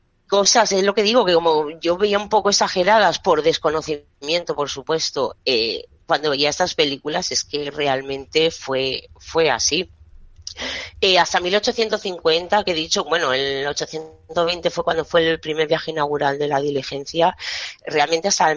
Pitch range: 150-195 Hz